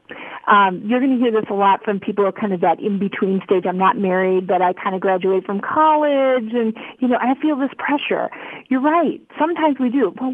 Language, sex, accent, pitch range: English, female, American, 205-300 Hz